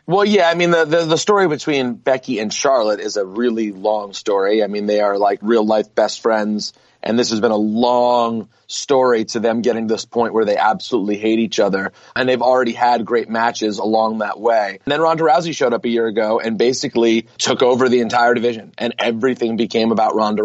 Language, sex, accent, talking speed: English, male, American, 215 wpm